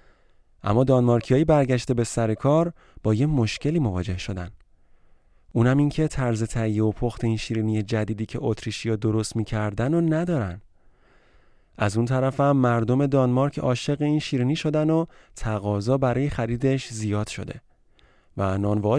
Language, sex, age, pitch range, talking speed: Persian, male, 30-49, 110-145 Hz, 145 wpm